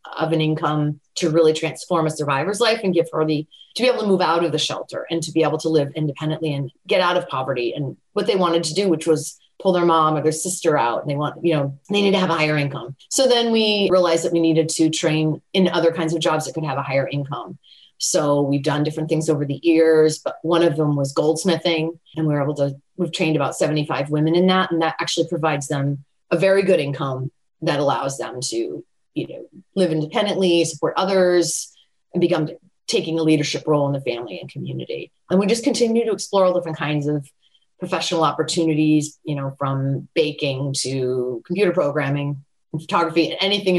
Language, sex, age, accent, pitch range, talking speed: English, female, 30-49, American, 150-180 Hz, 215 wpm